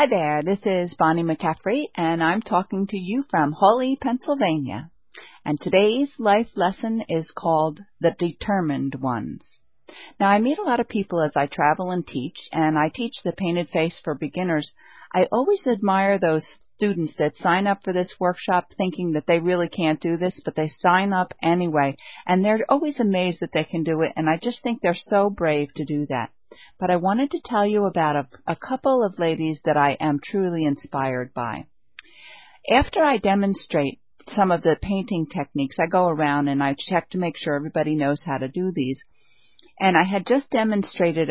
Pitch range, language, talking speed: 155-200 Hz, English, 190 wpm